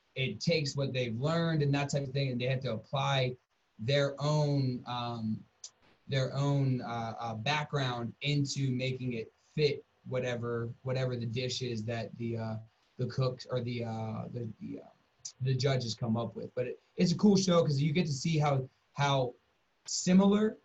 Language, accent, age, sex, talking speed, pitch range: English, American, 20-39, male, 180 wpm, 120-145 Hz